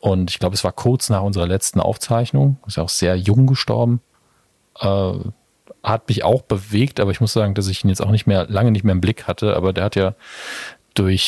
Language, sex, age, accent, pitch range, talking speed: German, male, 40-59, German, 90-105 Hz, 225 wpm